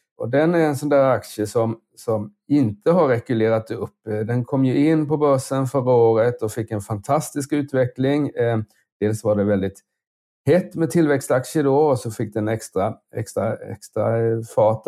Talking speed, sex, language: 170 wpm, male, Swedish